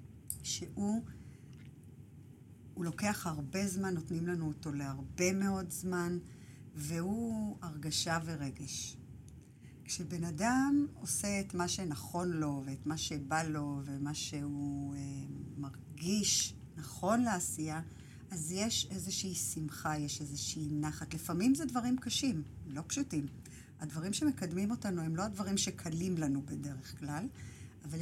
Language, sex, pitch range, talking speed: Hebrew, female, 140-185 Hz, 120 wpm